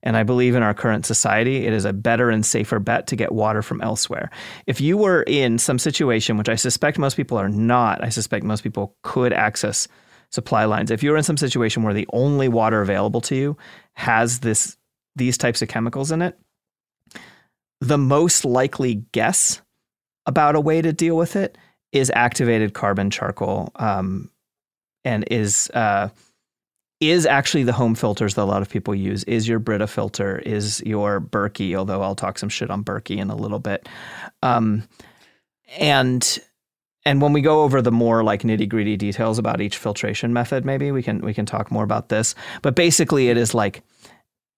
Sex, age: male, 30-49